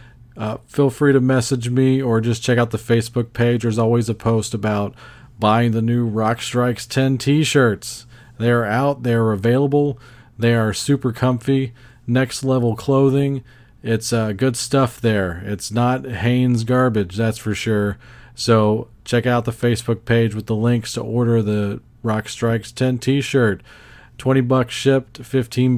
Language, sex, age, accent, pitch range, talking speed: English, male, 40-59, American, 115-125 Hz, 165 wpm